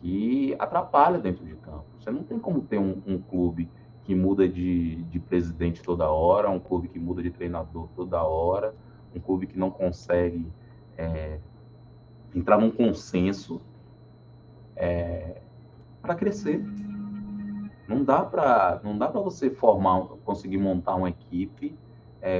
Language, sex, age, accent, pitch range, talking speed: Portuguese, male, 20-39, Brazilian, 90-120 Hz, 135 wpm